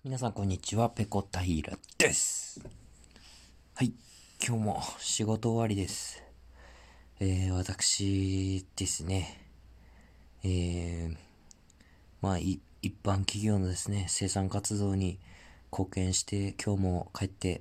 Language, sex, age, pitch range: Japanese, male, 40-59, 85-110 Hz